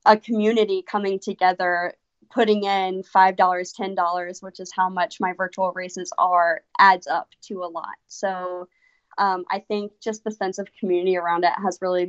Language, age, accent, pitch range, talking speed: English, 20-39, American, 185-220 Hz, 170 wpm